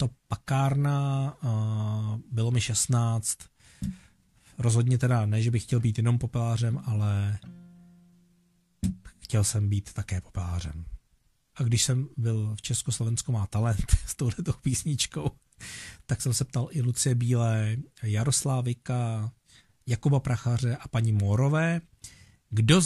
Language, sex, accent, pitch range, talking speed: Czech, male, native, 115-145 Hz, 120 wpm